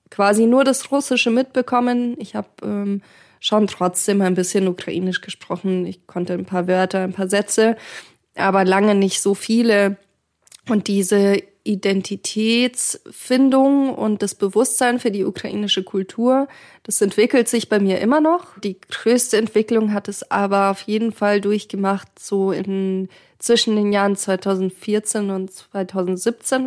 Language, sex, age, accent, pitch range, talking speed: German, female, 20-39, German, 190-225 Hz, 135 wpm